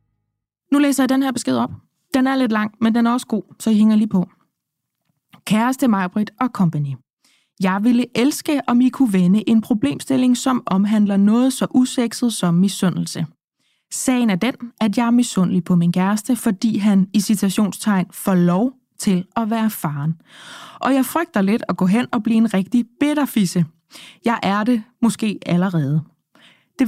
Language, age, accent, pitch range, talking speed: Danish, 20-39, native, 190-245 Hz, 175 wpm